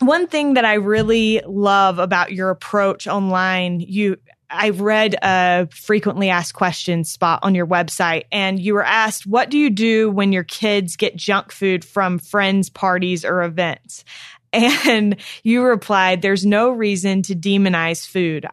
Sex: female